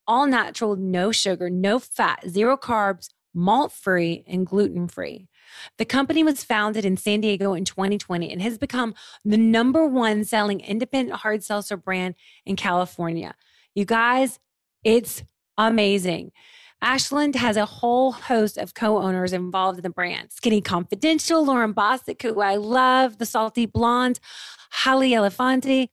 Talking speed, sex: 140 wpm, female